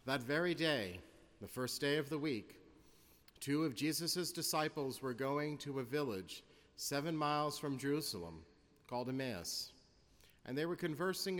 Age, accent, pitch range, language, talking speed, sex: 40-59, American, 105-150 Hz, English, 145 wpm, male